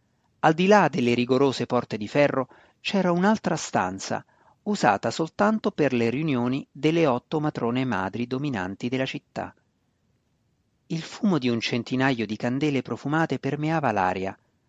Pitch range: 120-170 Hz